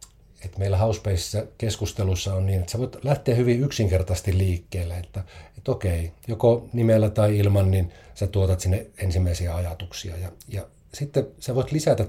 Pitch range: 95-115 Hz